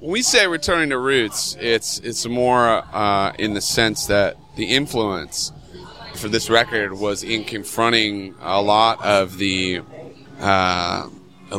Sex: male